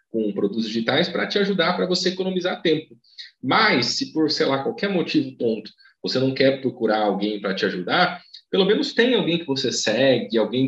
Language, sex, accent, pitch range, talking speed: Portuguese, male, Brazilian, 130-195 Hz, 190 wpm